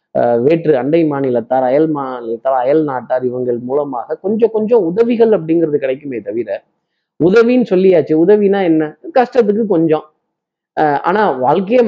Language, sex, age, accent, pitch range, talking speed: Tamil, male, 20-39, native, 130-175 Hz, 120 wpm